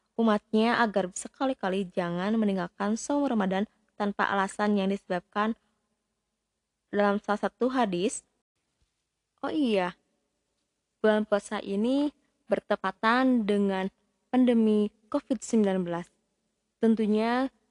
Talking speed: 85 wpm